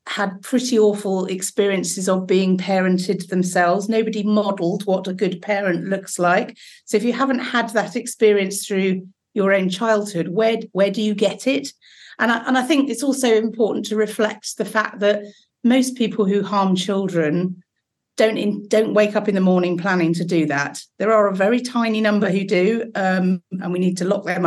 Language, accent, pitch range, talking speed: English, British, 180-210 Hz, 185 wpm